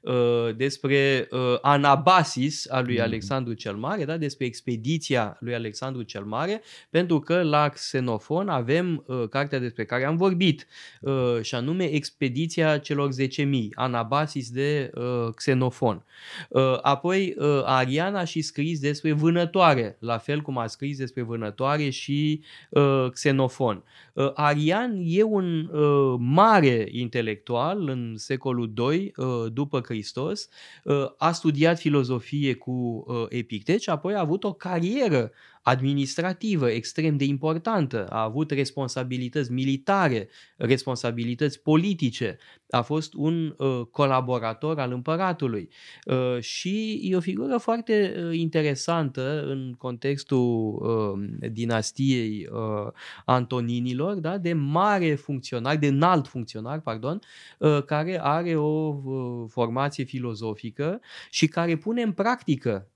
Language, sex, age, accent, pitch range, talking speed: Romanian, male, 20-39, native, 125-160 Hz, 105 wpm